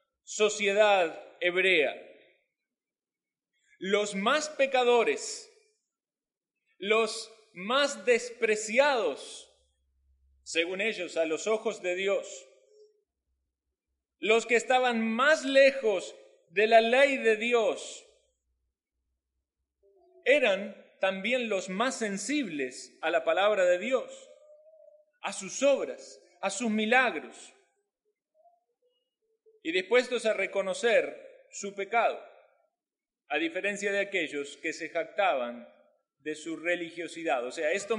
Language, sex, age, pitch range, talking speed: Spanish, male, 30-49, 195-275 Hz, 95 wpm